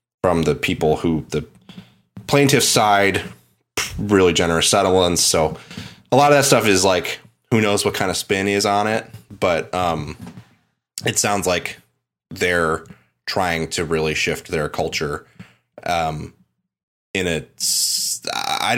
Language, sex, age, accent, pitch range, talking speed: English, male, 20-39, American, 85-110 Hz, 135 wpm